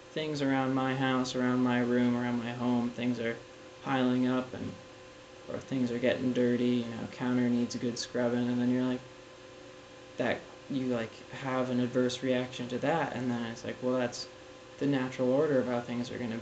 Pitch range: 120-140 Hz